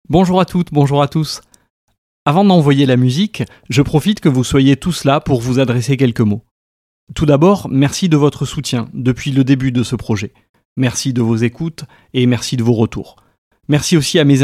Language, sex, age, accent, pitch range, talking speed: French, male, 30-49, French, 120-145 Hz, 195 wpm